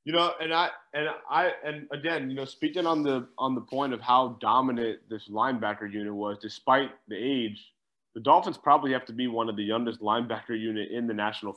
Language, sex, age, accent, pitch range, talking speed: English, male, 20-39, American, 115-150 Hz, 215 wpm